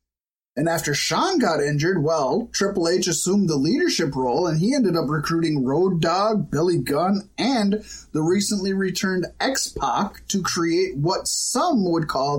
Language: English